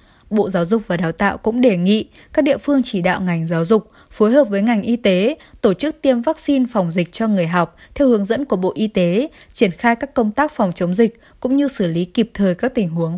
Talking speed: 255 wpm